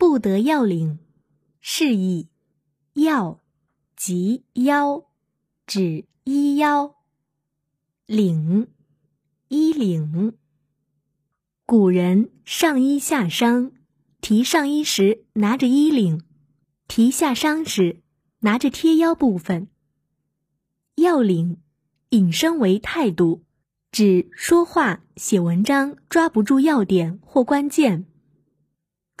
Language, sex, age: Chinese, female, 20-39